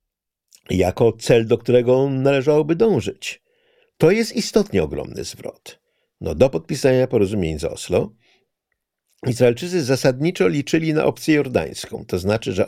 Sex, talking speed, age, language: male, 120 wpm, 50-69, Polish